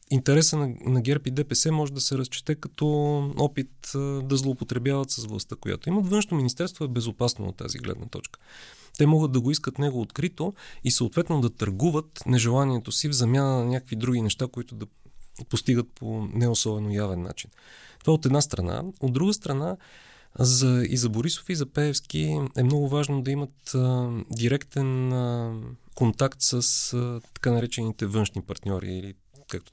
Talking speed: 170 wpm